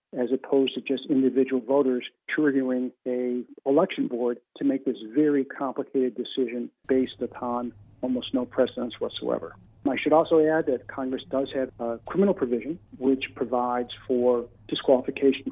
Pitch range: 120-135 Hz